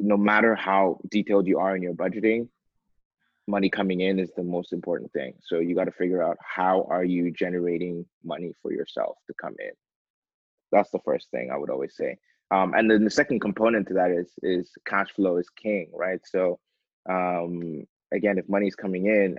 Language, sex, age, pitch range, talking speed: English, male, 20-39, 90-100 Hz, 200 wpm